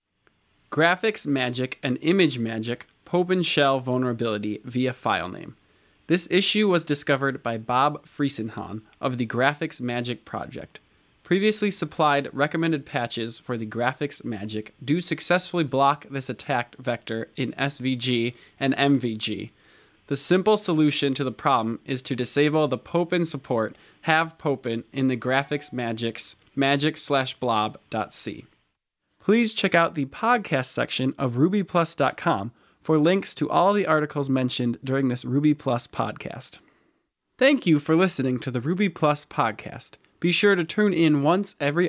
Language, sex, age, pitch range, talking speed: English, male, 20-39, 125-165 Hz, 140 wpm